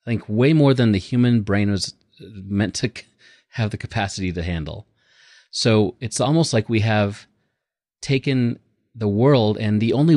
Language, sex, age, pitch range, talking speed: English, male, 30-49, 100-120 Hz, 165 wpm